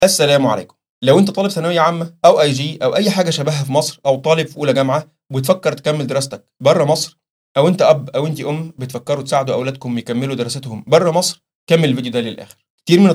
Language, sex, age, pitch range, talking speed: Arabic, male, 30-49, 125-165 Hz, 205 wpm